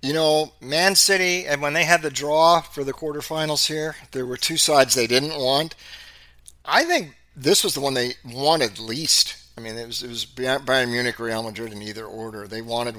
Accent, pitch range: American, 115-145 Hz